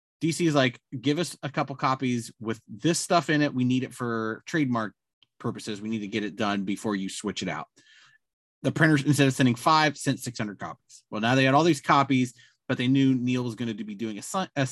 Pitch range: 115-145 Hz